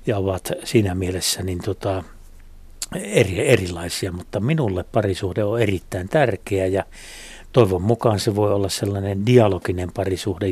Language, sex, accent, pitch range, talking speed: Finnish, male, native, 95-115 Hz, 115 wpm